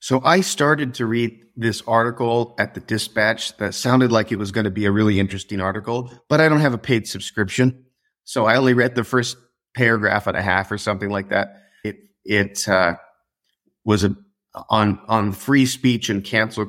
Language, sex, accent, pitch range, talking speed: English, male, American, 100-120 Hz, 195 wpm